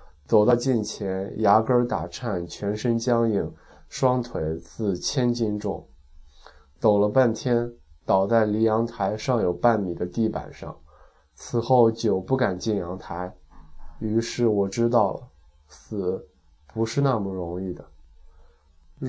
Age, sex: 20-39, male